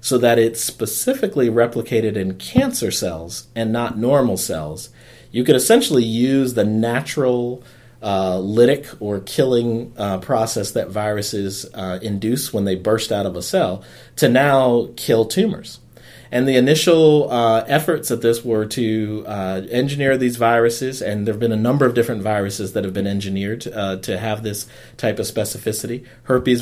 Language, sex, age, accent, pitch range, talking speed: English, male, 40-59, American, 105-125 Hz, 165 wpm